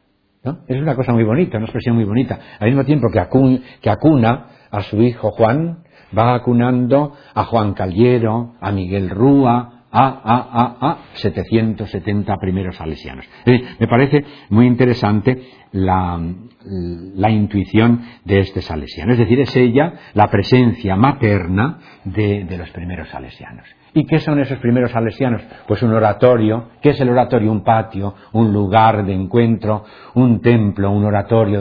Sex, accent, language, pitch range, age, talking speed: male, Spanish, Spanish, 105-125 Hz, 60-79, 150 wpm